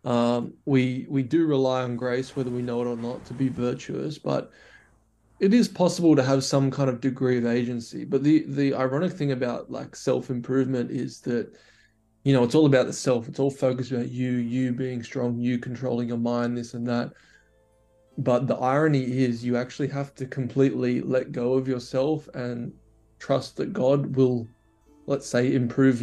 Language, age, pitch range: English, 20-39, 120-135 Hz